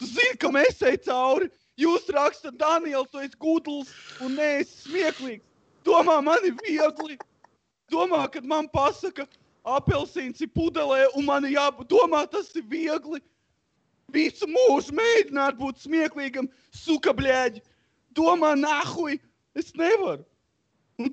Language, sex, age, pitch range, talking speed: English, male, 20-39, 250-335 Hz, 120 wpm